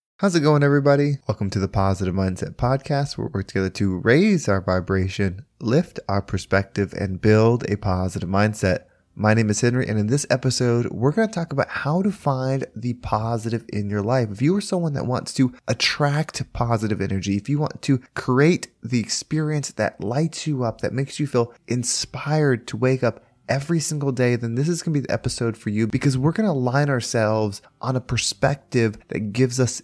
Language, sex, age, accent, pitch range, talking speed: English, male, 20-39, American, 105-135 Hz, 200 wpm